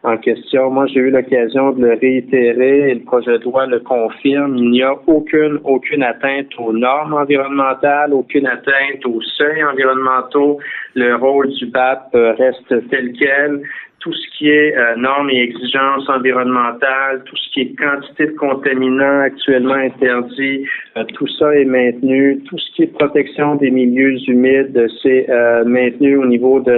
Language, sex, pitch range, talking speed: French, male, 125-145 Hz, 170 wpm